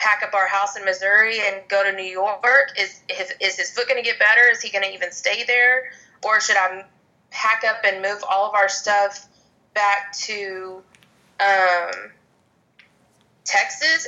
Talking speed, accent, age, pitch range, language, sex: 175 wpm, American, 20-39, 190-225 Hz, English, female